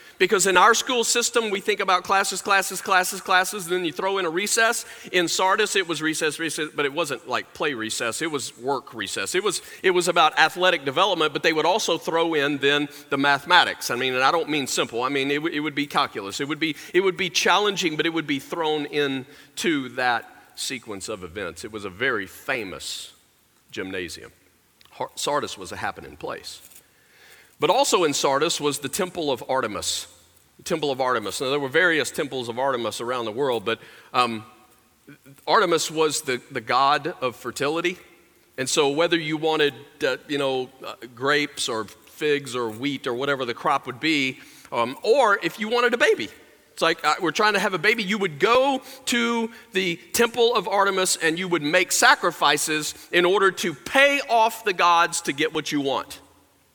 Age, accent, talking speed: 40-59, American, 195 wpm